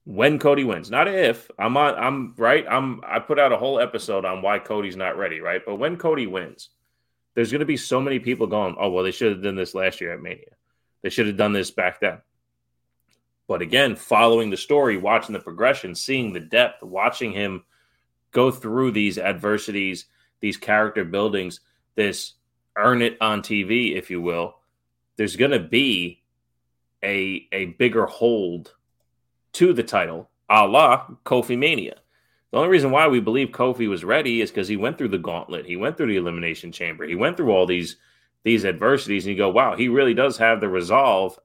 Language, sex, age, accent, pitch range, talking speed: English, male, 20-39, American, 90-120 Hz, 195 wpm